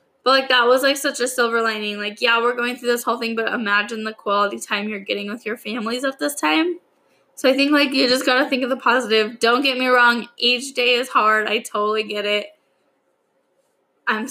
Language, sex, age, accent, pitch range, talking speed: English, female, 10-29, American, 220-265 Hz, 230 wpm